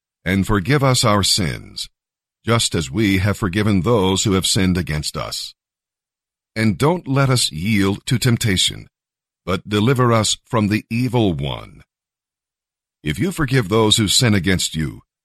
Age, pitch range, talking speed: 50-69, 95-125 Hz, 150 wpm